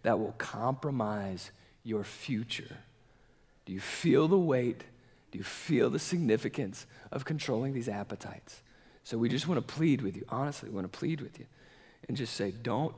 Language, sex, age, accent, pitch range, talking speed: English, male, 50-69, American, 105-135 Hz, 175 wpm